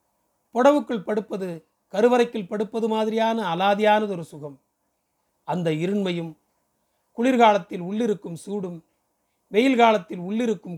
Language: Tamil